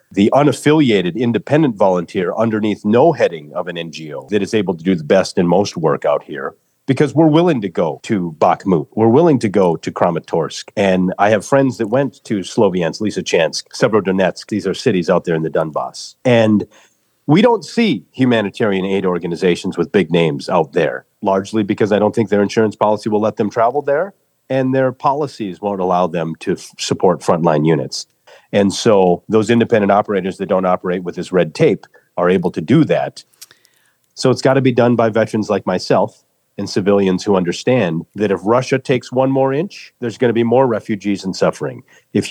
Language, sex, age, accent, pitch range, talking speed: English, male, 40-59, American, 95-130 Hz, 195 wpm